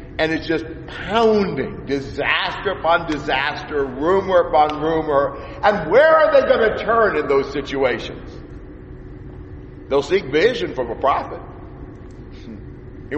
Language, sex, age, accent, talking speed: English, male, 50-69, American, 125 wpm